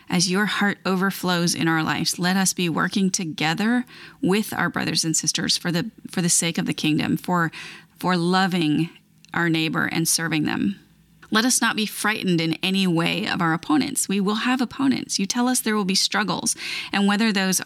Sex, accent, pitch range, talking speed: female, American, 170-220 Hz, 195 wpm